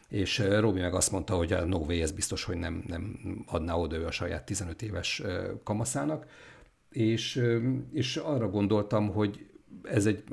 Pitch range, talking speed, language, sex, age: 90-110 Hz, 170 wpm, Hungarian, male, 50-69